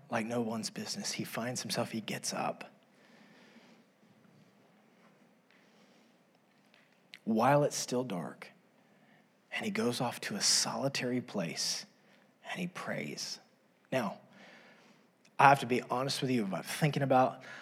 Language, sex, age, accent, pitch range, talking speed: English, male, 30-49, American, 125-205 Hz, 125 wpm